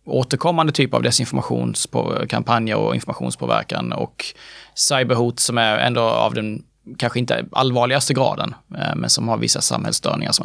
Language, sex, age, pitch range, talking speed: Swedish, male, 30-49, 115-150 Hz, 130 wpm